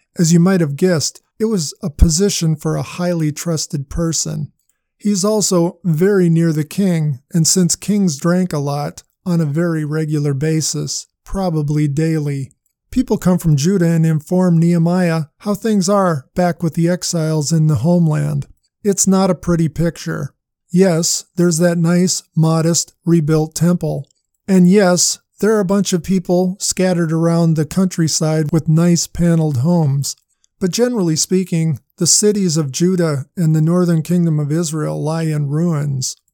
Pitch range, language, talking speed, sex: 155-180 Hz, English, 155 wpm, male